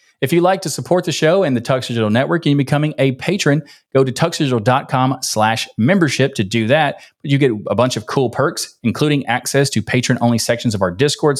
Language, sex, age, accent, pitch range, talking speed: English, male, 30-49, American, 120-160 Hz, 210 wpm